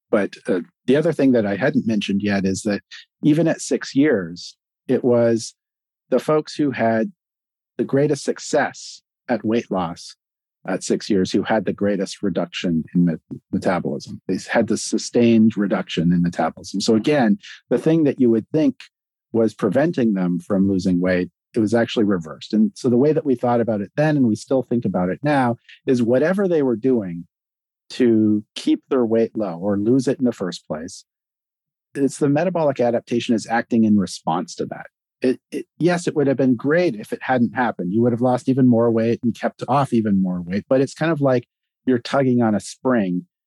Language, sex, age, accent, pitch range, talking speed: English, male, 50-69, American, 105-130 Hz, 195 wpm